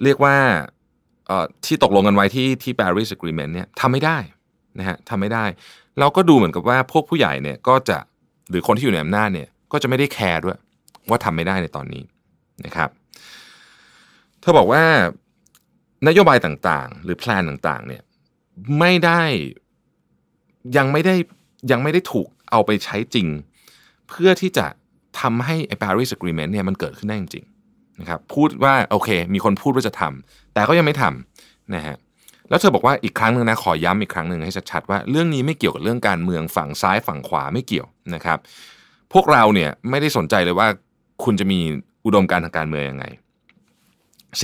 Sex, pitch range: male, 90-140 Hz